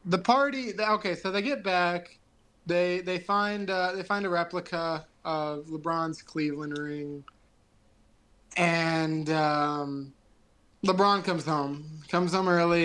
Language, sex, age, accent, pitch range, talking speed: English, male, 20-39, American, 145-195 Hz, 130 wpm